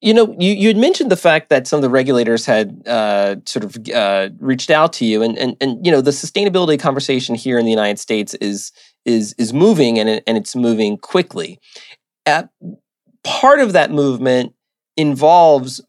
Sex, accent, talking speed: male, American, 190 wpm